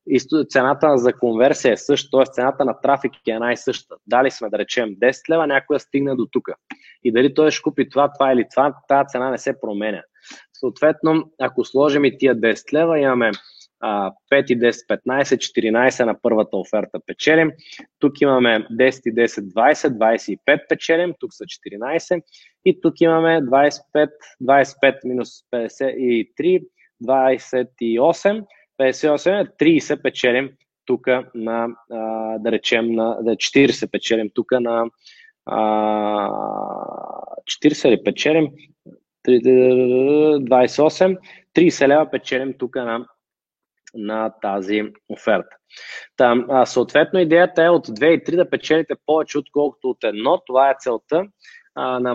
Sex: male